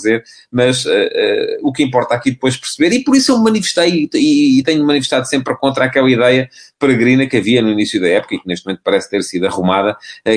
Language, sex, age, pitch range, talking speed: English, male, 30-49, 110-155 Hz, 225 wpm